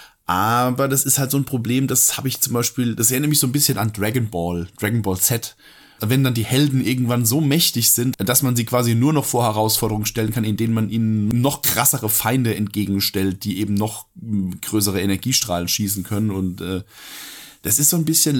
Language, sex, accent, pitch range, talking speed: German, male, German, 105-130 Hz, 205 wpm